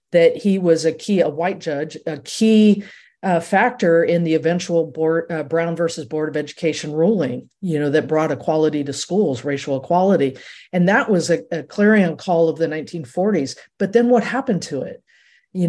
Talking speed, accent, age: 185 wpm, American, 50-69